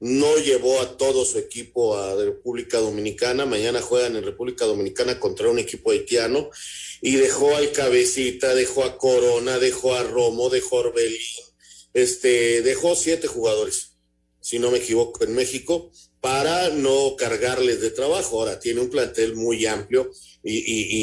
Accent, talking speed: Mexican, 150 wpm